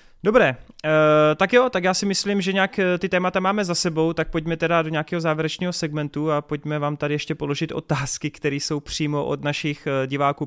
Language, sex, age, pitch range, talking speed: Czech, male, 30-49, 130-165 Hz, 195 wpm